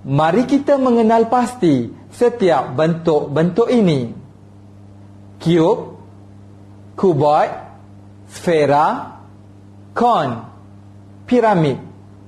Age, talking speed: 40-59, 60 wpm